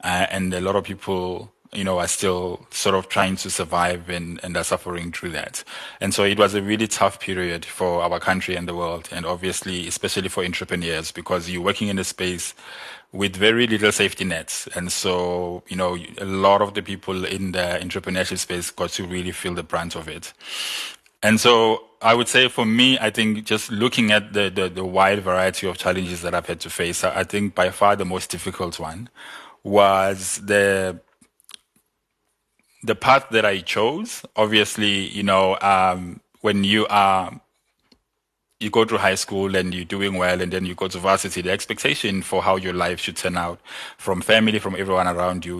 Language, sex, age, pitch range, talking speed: English, male, 20-39, 90-100 Hz, 195 wpm